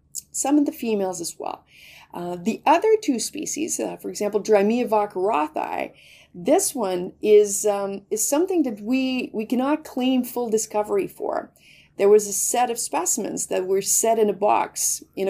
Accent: American